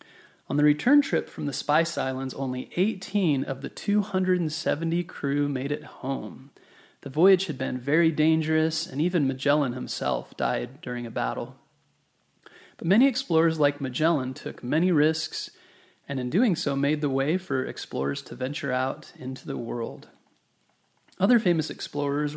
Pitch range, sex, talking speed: 140-190 Hz, male, 155 wpm